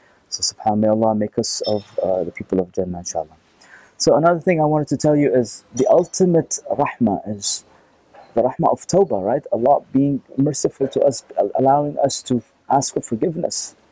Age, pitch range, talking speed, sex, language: 30-49, 110-140 Hz, 180 wpm, male, English